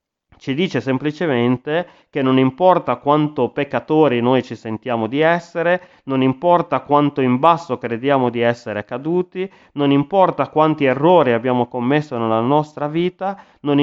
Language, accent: Italian, native